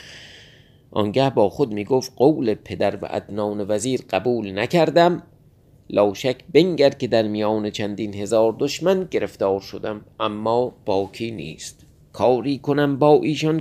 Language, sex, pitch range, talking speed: Persian, male, 105-145 Hz, 125 wpm